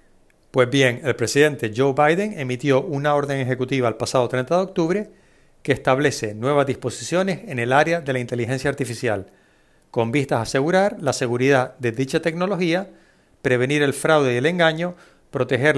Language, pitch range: Spanish, 130-165 Hz